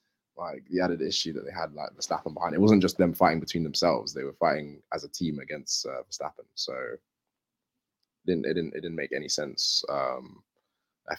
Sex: male